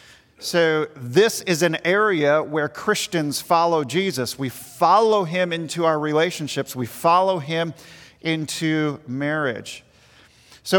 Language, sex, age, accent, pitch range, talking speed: English, male, 40-59, American, 150-180 Hz, 115 wpm